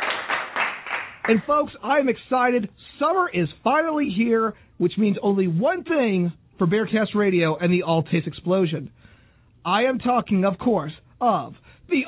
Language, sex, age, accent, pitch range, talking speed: English, male, 40-59, American, 175-255 Hz, 140 wpm